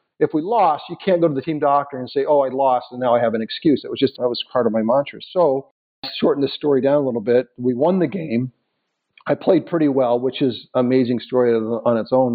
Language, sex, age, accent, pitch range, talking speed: English, male, 50-69, American, 120-145 Hz, 260 wpm